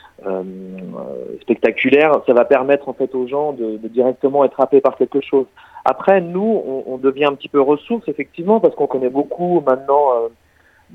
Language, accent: French, French